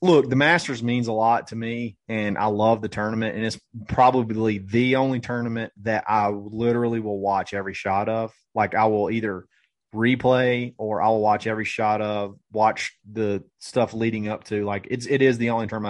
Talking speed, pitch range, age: 195 wpm, 105-125 Hz, 30-49